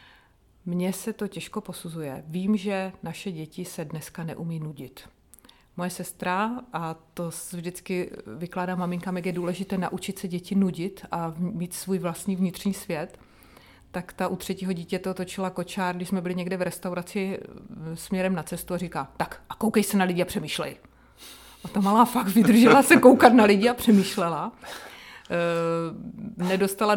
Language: Czech